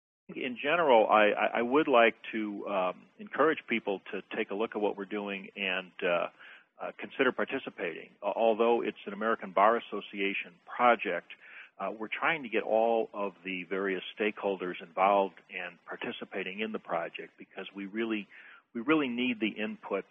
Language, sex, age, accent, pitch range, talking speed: English, male, 40-59, American, 95-115 Hz, 165 wpm